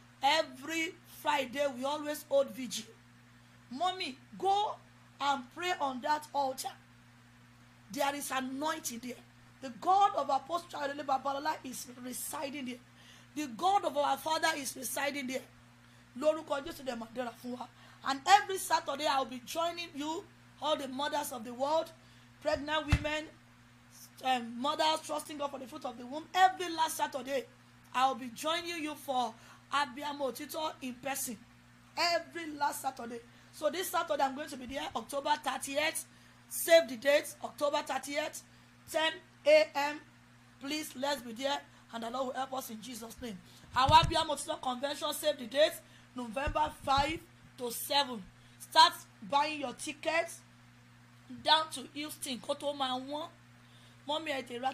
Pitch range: 255-305 Hz